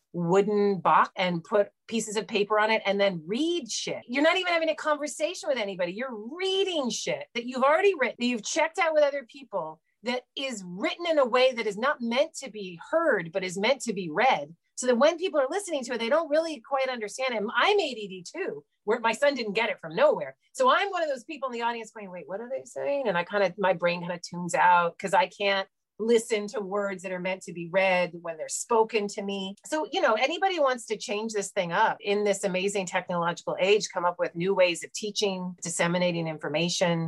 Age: 30-49